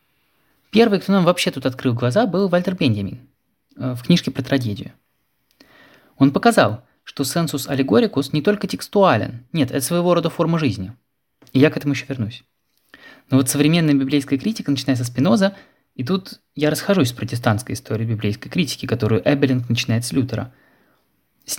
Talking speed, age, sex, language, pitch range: 160 wpm, 20-39, male, Russian, 130-175 Hz